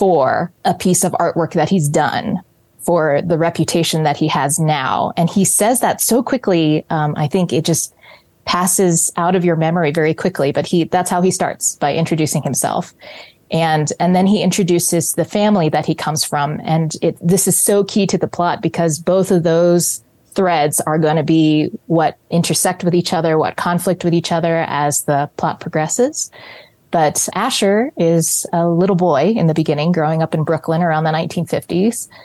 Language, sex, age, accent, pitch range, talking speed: English, female, 20-39, American, 155-185 Hz, 190 wpm